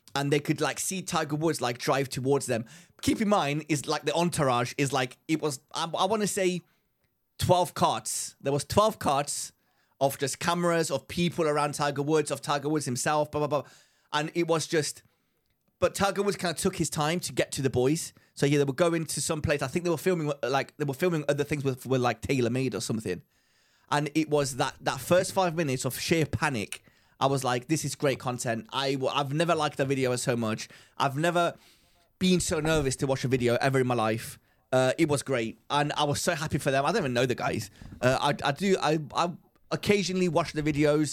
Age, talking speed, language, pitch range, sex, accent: 30-49, 230 wpm, English, 130-160 Hz, male, British